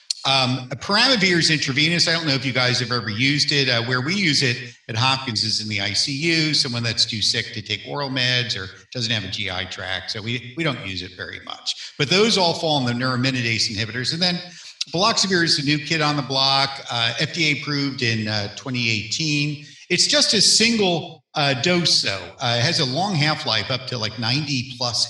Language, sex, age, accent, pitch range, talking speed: English, male, 50-69, American, 110-150 Hz, 215 wpm